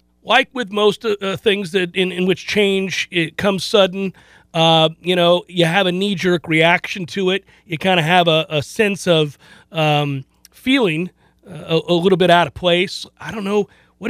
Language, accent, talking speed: English, American, 185 wpm